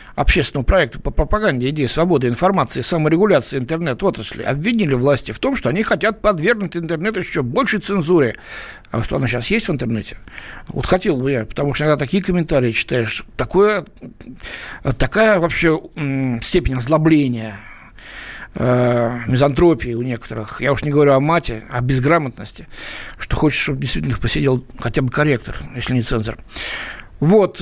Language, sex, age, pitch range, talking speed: Russian, male, 60-79, 125-185 Hz, 150 wpm